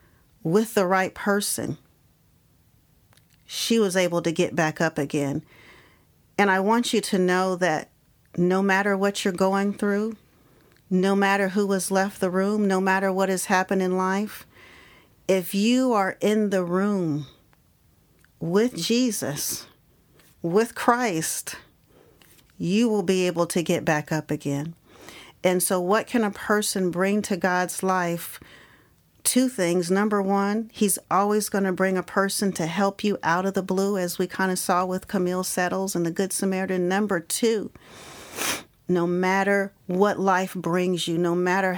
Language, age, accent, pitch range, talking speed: English, 40-59, American, 170-200 Hz, 155 wpm